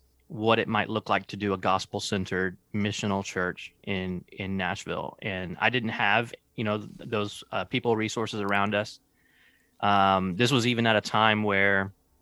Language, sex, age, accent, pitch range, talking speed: English, male, 20-39, American, 100-120 Hz, 175 wpm